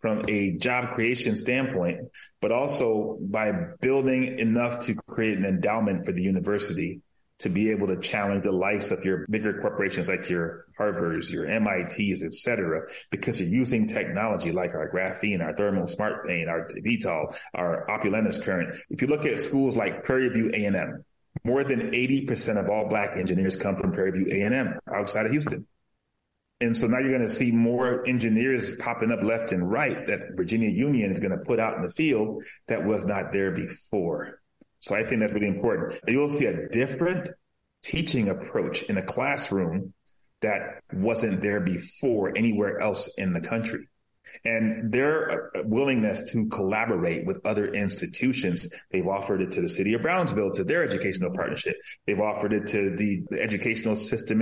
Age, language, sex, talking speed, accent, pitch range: 30-49, English, male, 175 wpm, American, 100-125 Hz